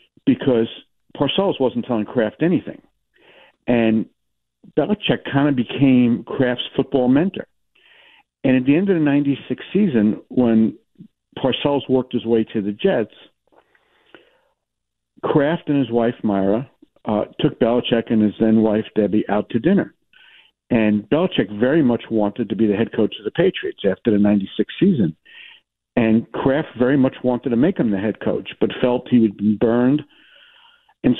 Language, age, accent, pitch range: English, 60-79, American, 110-145 Hz